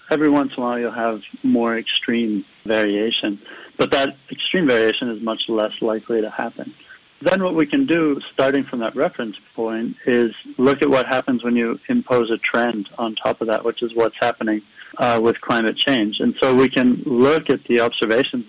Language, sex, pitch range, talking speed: English, male, 110-140 Hz, 195 wpm